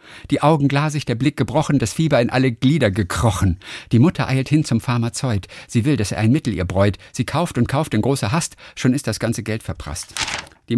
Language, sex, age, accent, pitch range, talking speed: German, male, 50-69, German, 95-130 Hz, 225 wpm